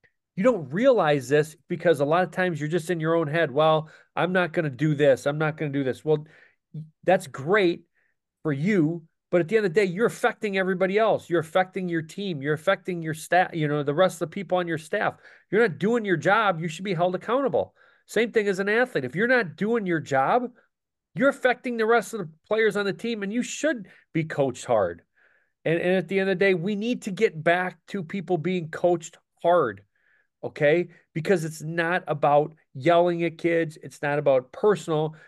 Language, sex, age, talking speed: English, male, 40-59, 220 wpm